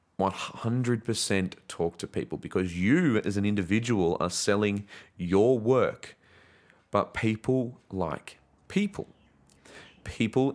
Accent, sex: Australian, male